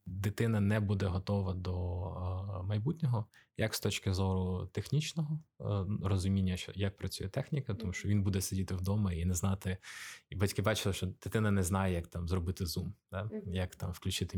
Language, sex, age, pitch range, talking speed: Ukrainian, male, 20-39, 95-105 Hz, 175 wpm